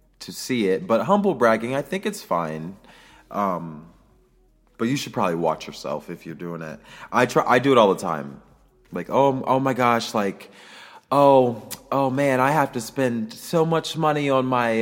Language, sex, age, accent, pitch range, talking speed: English, male, 30-49, American, 95-135 Hz, 190 wpm